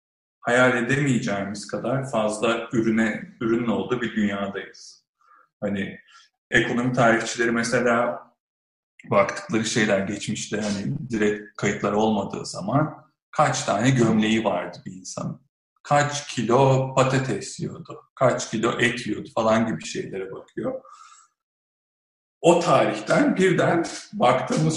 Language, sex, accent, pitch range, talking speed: Turkish, male, native, 110-155 Hz, 105 wpm